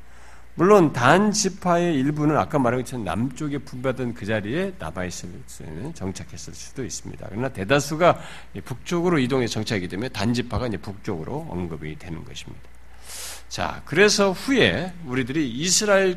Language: Korean